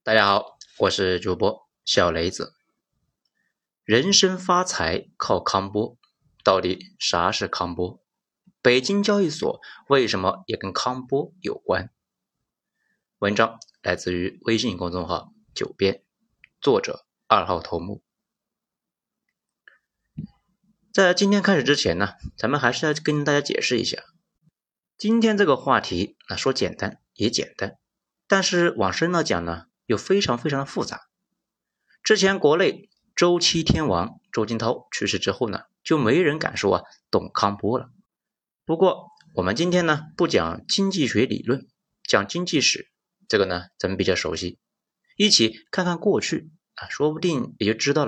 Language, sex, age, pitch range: Chinese, male, 30-49, 115-190 Hz